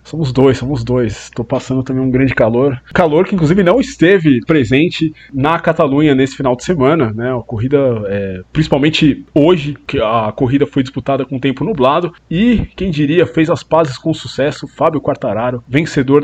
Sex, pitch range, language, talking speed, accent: male, 125-155 Hz, Portuguese, 175 wpm, Brazilian